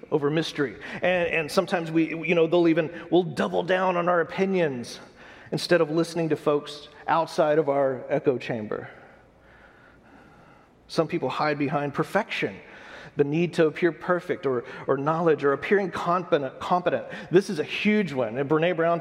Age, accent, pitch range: 40-59, American, 145-175 Hz